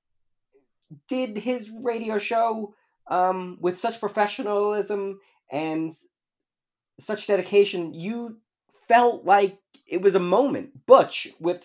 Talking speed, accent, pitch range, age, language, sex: 105 wpm, American, 165-240 Hz, 40-59, English, male